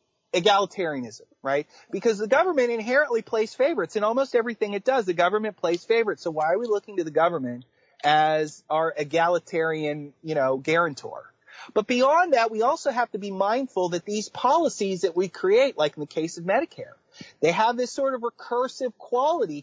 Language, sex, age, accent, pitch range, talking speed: English, male, 30-49, American, 170-220 Hz, 180 wpm